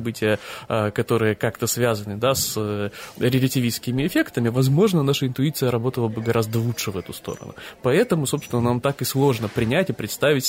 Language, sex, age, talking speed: Russian, male, 20-39, 155 wpm